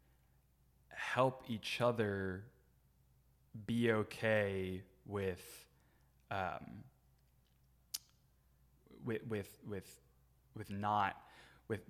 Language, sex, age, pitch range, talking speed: English, male, 20-39, 100-120 Hz, 60 wpm